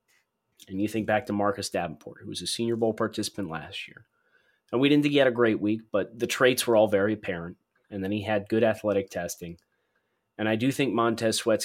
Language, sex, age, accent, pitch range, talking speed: English, male, 30-49, American, 100-130 Hz, 225 wpm